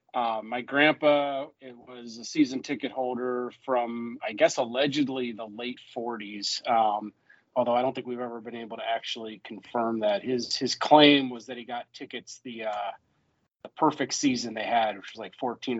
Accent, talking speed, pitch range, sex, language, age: American, 180 wpm, 115-135 Hz, male, English, 30-49